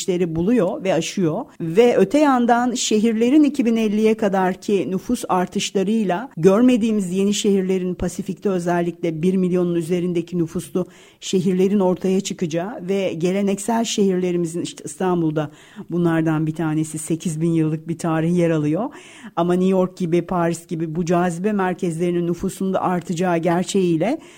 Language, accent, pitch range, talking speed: Turkish, native, 175-220 Hz, 125 wpm